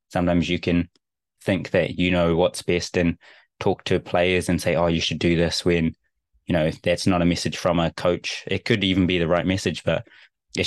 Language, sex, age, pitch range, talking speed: English, male, 20-39, 85-90 Hz, 220 wpm